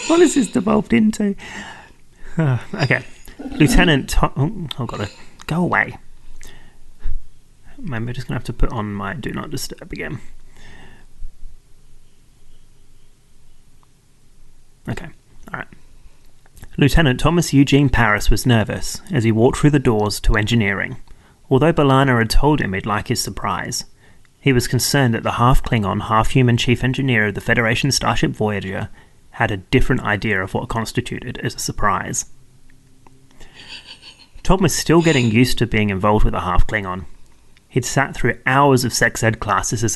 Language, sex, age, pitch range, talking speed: English, male, 30-49, 110-135 Hz, 150 wpm